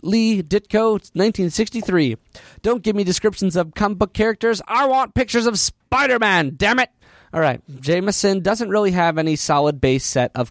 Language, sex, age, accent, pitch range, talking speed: English, male, 30-49, American, 130-190 Hz, 155 wpm